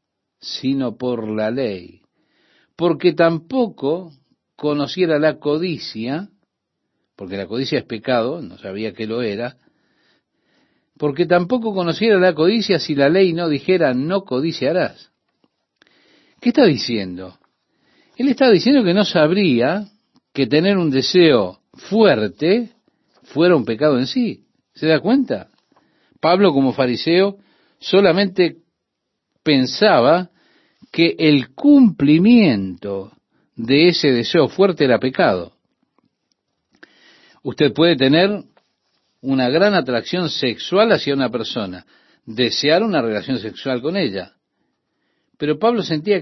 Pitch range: 130-205 Hz